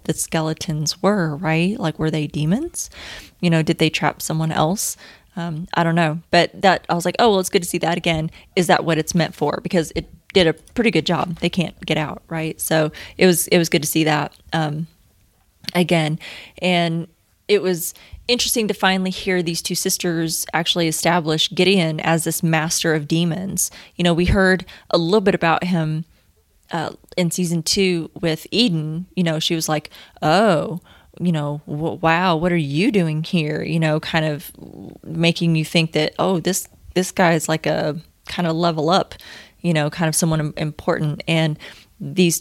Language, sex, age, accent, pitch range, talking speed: English, female, 20-39, American, 160-185 Hz, 190 wpm